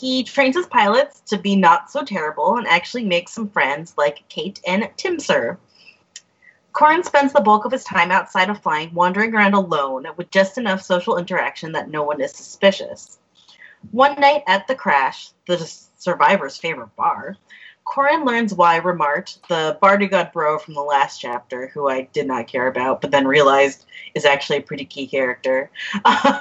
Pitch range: 155-245 Hz